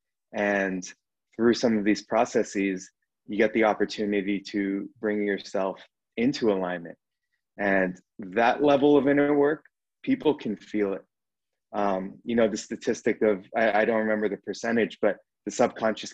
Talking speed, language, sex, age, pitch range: 150 wpm, English, male, 30-49, 105-125 Hz